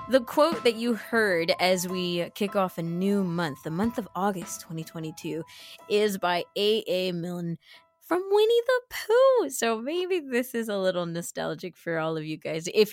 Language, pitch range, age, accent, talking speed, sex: English, 175-220 Hz, 20-39, American, 180 wpm, female